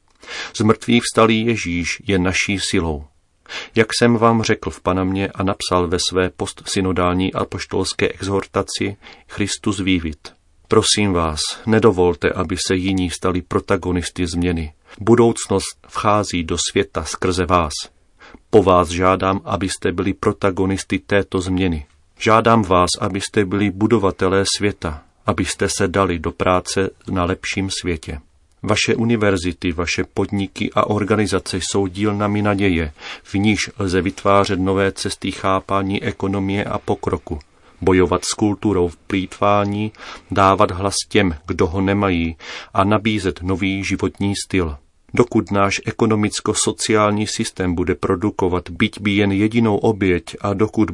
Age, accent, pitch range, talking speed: 40-59, native, 90-105 Hz, 125 wpm